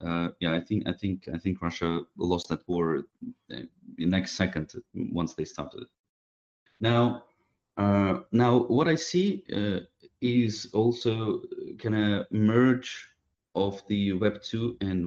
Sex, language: male, English